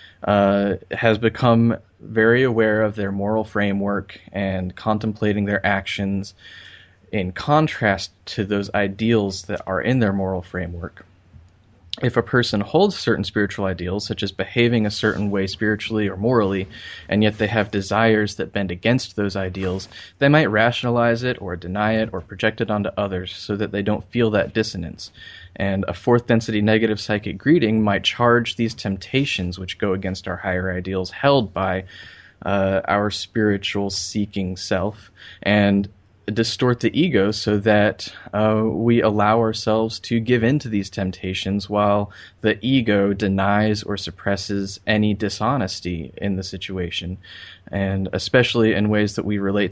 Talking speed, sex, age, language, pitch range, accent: 155 wpm, male, 20-39, English, 95-110 Hz, American